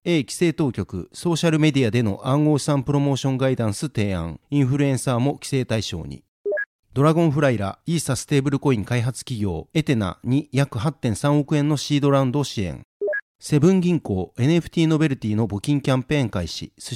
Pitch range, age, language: 120-155 Hz, 40-59, Japanese